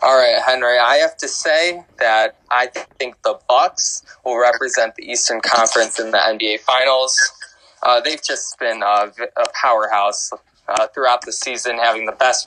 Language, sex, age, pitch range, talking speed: English, male, 20-39, 110-130 Hz, 170 wpm